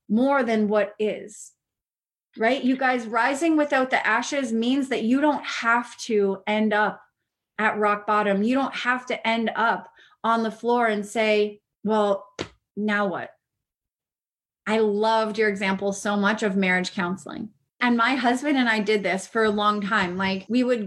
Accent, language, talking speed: American, English, 170 wpm